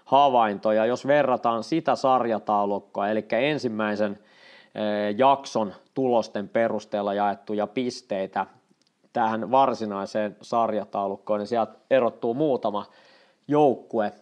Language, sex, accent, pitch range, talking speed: Finnish, male, native, 105-130 Hz, 80 wpm